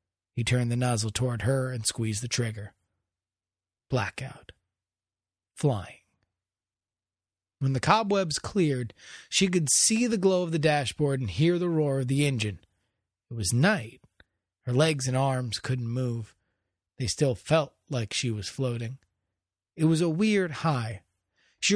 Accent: American